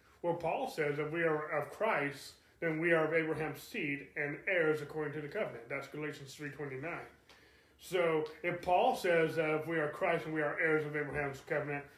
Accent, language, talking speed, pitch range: American, English, 195 wpm, 145-185 Hz